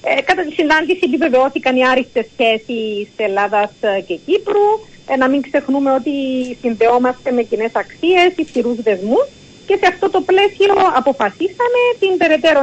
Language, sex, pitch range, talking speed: Greek, female, 220-325 Hz, 145 wpm